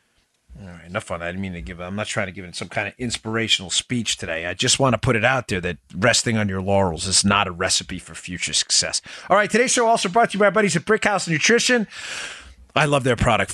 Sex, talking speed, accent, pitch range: male, 250 wpm, American, 120-175 Hz